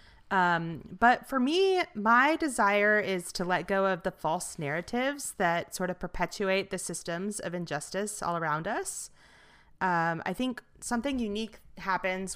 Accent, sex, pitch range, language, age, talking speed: American, female, 160-195 Hz, English, 30-49, 150 wpm